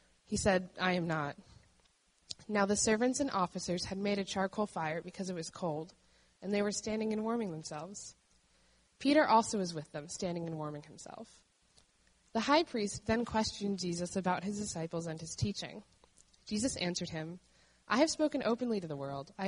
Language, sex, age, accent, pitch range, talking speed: English, female, 20-39, American, 165-220 Hz, 180 wpm